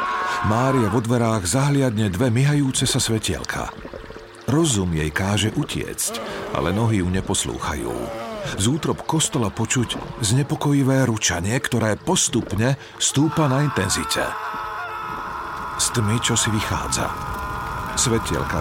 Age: 50-69